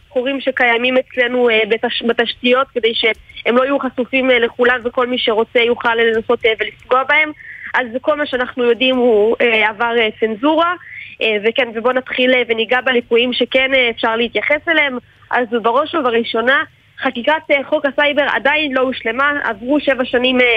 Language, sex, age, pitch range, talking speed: Hebrew, female, 20-39, 230-275 Hz, 130 wpm